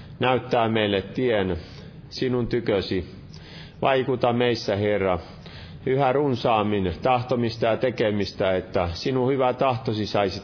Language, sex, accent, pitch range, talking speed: Finnish, male, native, 105-135 Hz, 105 wpm